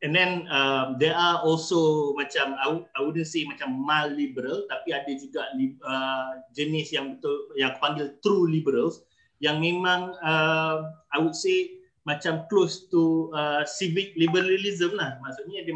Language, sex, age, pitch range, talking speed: Malay, male, 30-49, 145-185 Hz, 160 wpm